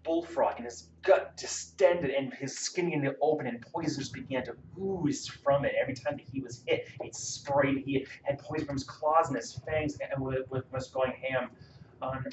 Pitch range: 115-150 Hz